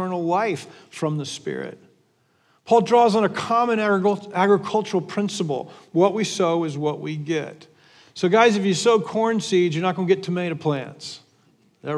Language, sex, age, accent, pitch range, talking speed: English, male, 50-69, American, 170-220 Hz, 180 wpm